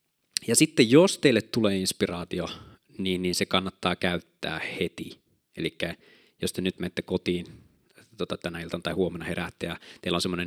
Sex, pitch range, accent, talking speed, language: male, 90-120 Hz, native, 160 wpm, Finnish